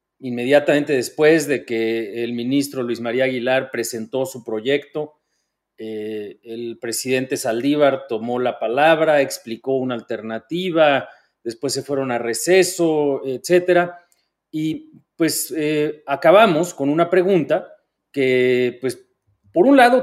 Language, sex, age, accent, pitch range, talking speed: Spanish, male, 40-59, Mexican, 125-185 Hz, 120 wpm